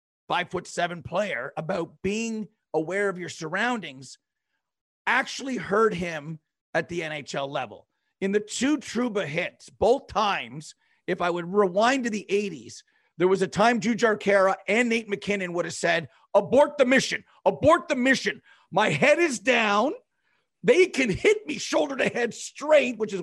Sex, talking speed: male, 165 wpm